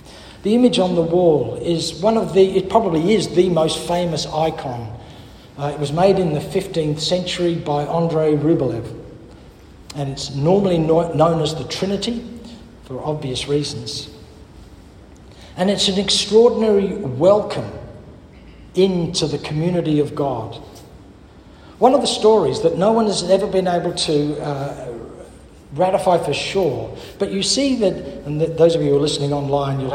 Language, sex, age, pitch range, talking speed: English, male, 60-79, 145-190 Hz, 150 wpm